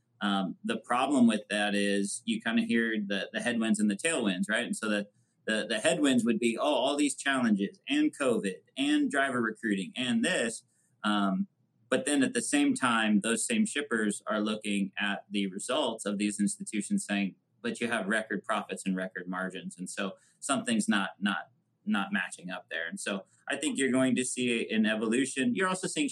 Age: 30-49